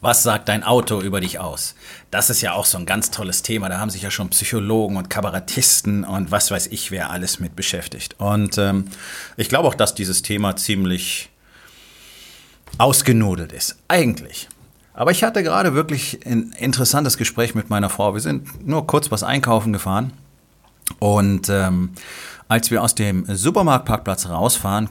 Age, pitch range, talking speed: 30-49, 95-115 Hz, 170 wpm